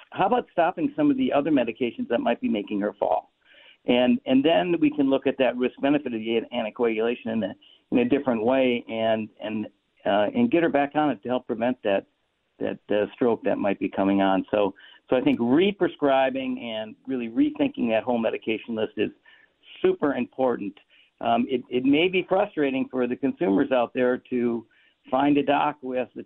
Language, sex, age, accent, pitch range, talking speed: English, male, 60-79, American, 115-145 Hz, 195 wpm